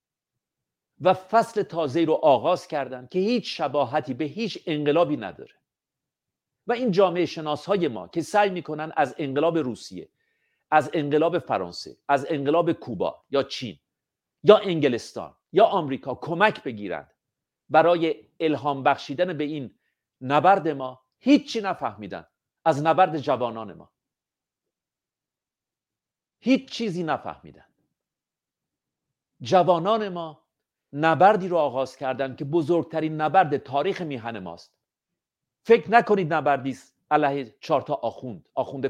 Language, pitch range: Persian, 140-190 Hz